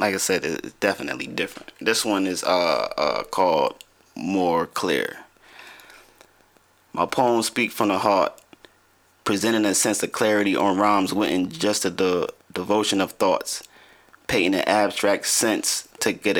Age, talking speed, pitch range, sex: 30-49, 145 wpm, 100-120 Hz, male